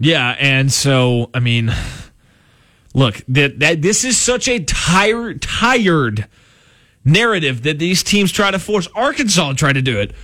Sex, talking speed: male, 160 wpm